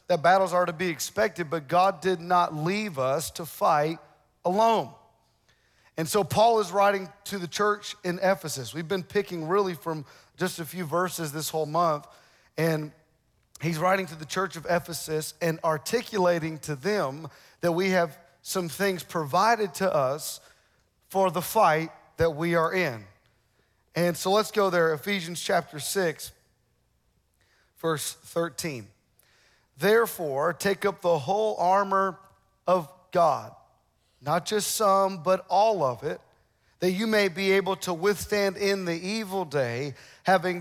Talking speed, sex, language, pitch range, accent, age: 150 wpm, male, English, 160-195 Hz, American, 40-59